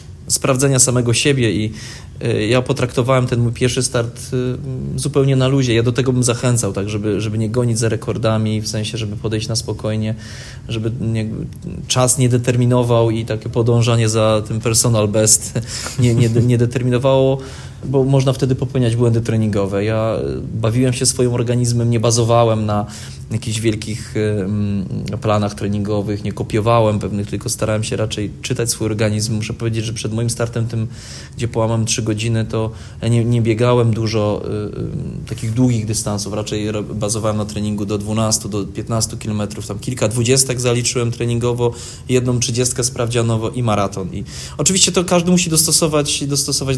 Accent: native